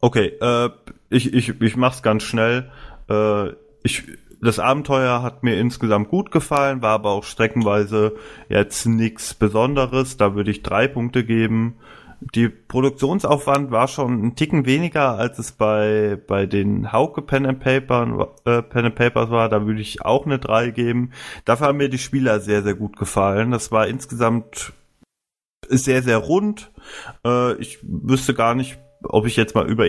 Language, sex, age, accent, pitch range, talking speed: German, male, 30-49, German, 105-130 Hz, 165 wpm